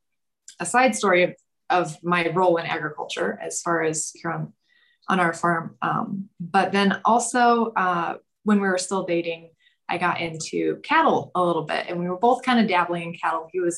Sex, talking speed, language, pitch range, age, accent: female, 195 wpm, English, 170-205 Hz, 20-39, American